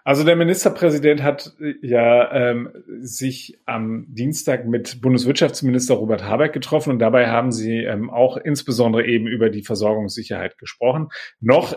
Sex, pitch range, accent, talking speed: male, 110-130 Hz, German, 140 wpm